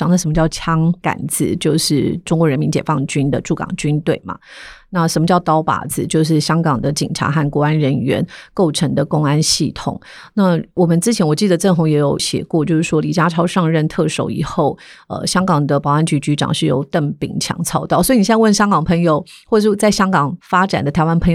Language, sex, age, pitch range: Chinese, female, 30-49, 150-175 Hz